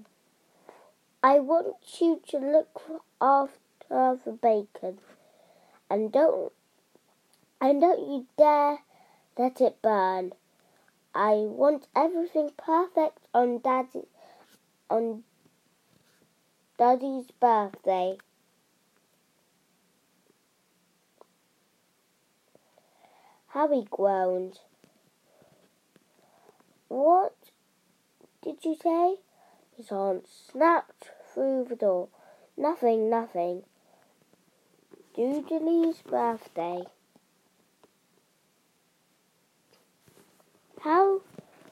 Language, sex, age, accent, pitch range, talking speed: English, female, 20-39, British, 225-310 Hz, 60 wpm